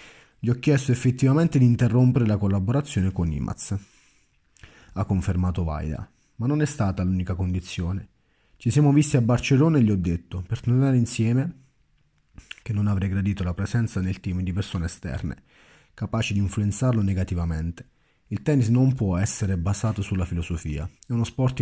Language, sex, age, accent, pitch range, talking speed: Italian, male, 30-49, native, 95-125 Hz, 160 wpm